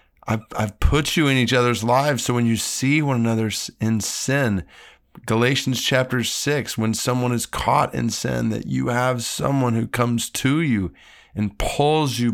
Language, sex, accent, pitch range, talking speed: English, male, American, 95-125 Hz, 175 wpm